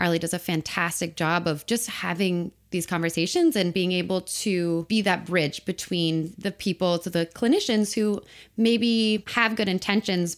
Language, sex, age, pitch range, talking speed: English, female, 20-39, 170-210 Hz, 170 wpm